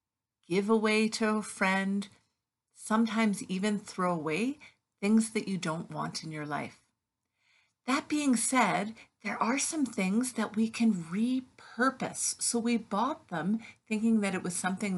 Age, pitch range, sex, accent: 50-69, 175-235 Hz, female, American